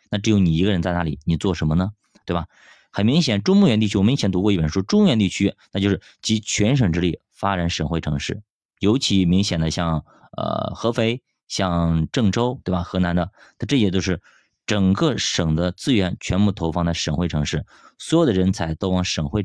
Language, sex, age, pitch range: Chinese, male, 20-39, 85-110 Hz